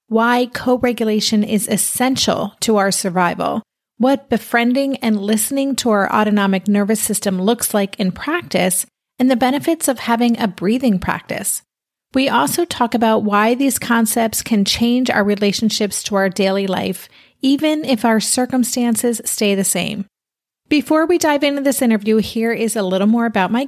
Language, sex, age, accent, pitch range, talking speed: English, female, 30-49, American, 195-240 Hz, 160 wpm